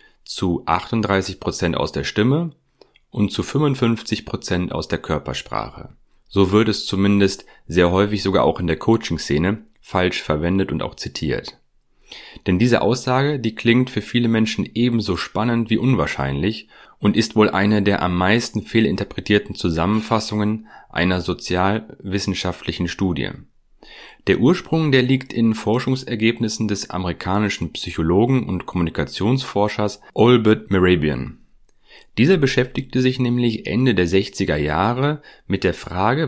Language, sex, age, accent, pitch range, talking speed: German, male, 30-49, German, 90-115 Hz, 125 wpm